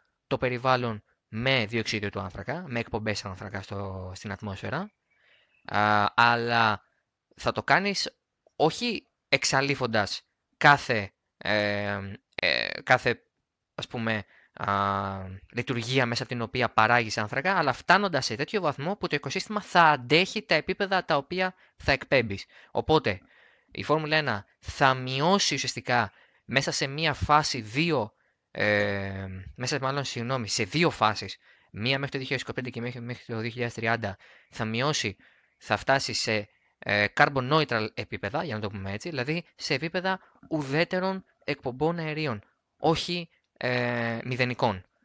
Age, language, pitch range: 20-39, Greek, 105-150 Hz